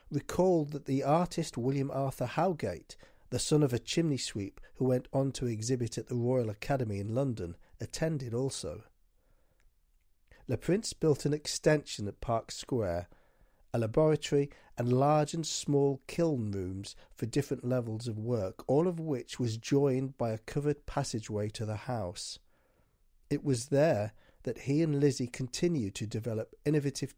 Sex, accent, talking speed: male, British, 155 wpm